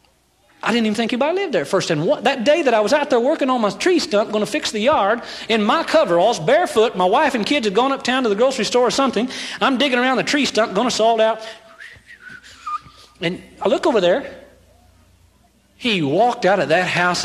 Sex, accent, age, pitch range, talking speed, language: male, American, 40-59, 185-300 Hz, 225 wpm, English